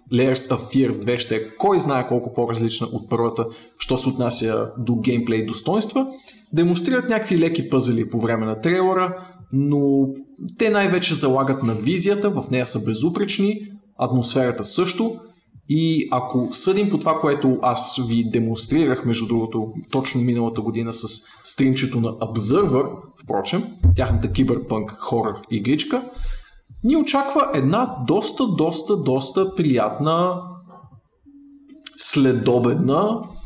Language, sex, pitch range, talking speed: Bulgarian, male, 115-170 Hz, 120 wpm